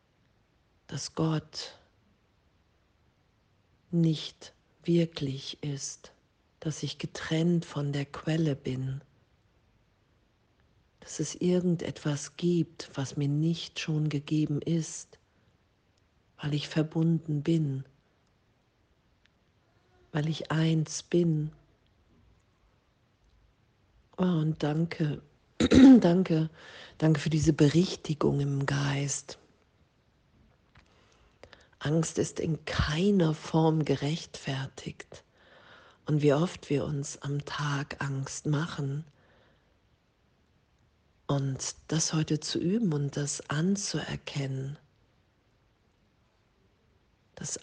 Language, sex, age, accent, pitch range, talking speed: German, female, 40-59, German, 125-160 Hz, 80 wpm